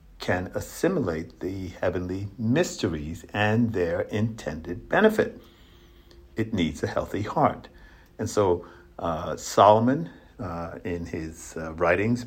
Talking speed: 110 wpm